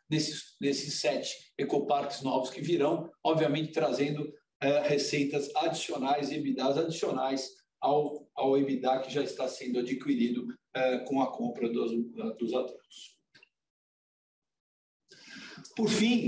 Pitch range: 130-160 Hz